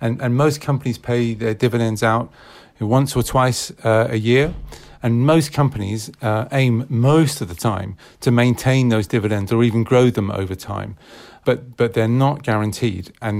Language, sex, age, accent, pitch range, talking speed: English, male, 40-59, British, 110-125 Hz, 175 wpm